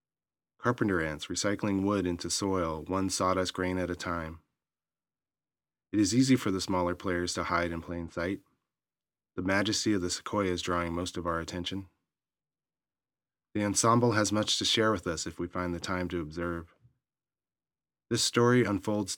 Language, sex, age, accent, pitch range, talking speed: English, male, 30-49, American, 85-105 Hz, 165 wpm